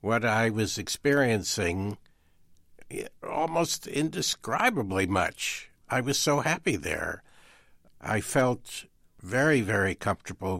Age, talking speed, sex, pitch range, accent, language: 60-79, 95 wpm, male, 105-150 Hz, American, English